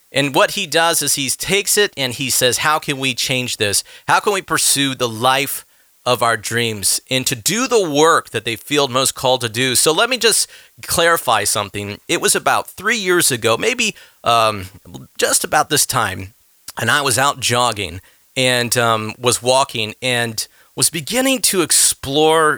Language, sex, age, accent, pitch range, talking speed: English, male, 40-59, American, 115-145 Hz, 185 wpm